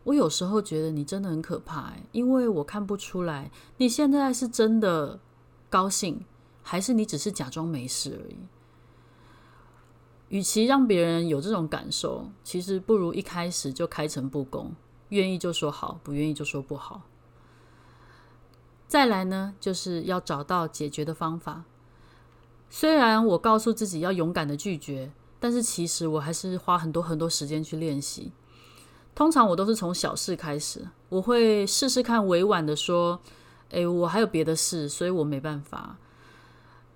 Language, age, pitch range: Chinese, 30-49, 150-205 Hz